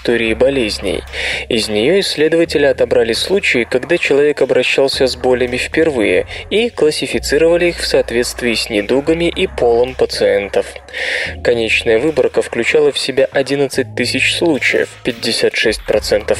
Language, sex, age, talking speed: Russian, male, 20-39, 110 wpm